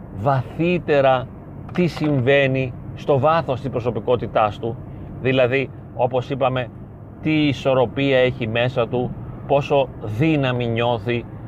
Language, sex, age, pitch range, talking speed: Greek, male, 30-49, 120-145 Hz, 100 wpm